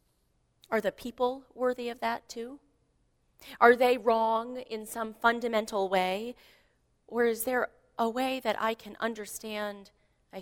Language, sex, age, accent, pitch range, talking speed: English, female, 30-49, American, 175-230 Hz, 140 wpm